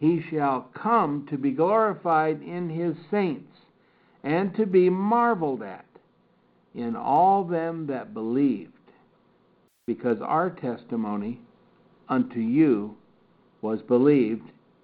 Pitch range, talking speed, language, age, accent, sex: 130-170 Hz, 105 wpm, English, 60-79, American, male